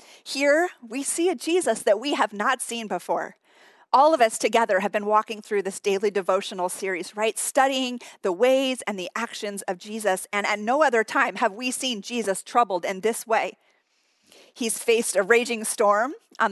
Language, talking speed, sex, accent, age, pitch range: English, 185 wpm, female, American, 30-49, 210-265 Hz